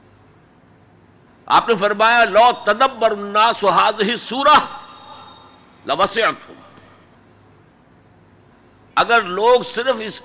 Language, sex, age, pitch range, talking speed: Urdu, male, 60-79, 160-245 Hz, 70 wpm